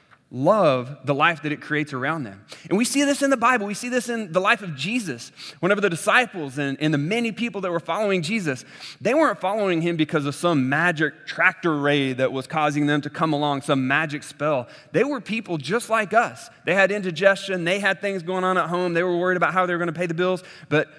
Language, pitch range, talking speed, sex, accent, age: English, 145-190 Hz, 240 wpm, male, American, 30-49